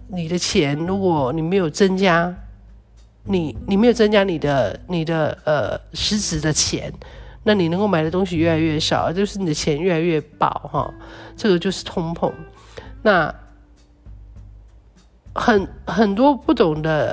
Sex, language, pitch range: male, Chinese, 145-205 Hz